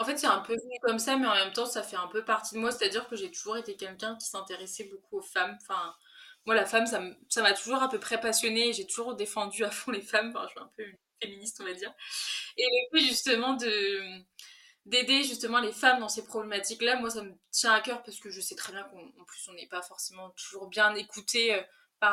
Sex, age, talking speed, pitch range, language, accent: female, 20-39, 245 wpm, 200-240 Hz, French, French